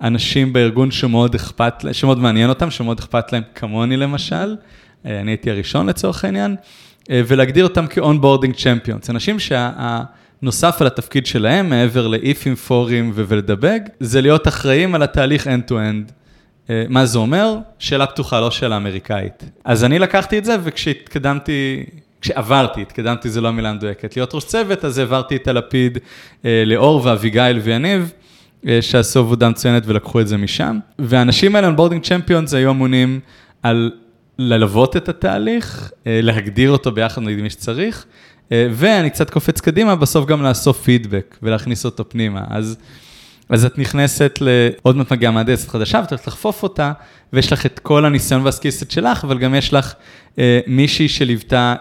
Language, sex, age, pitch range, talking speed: English, male, 20-39, 115-145 Hz, 140 wpm